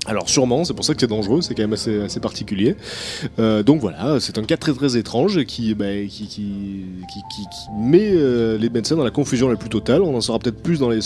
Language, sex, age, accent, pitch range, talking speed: French, male, 20-39, French, 110-150 Hz, 255 wpm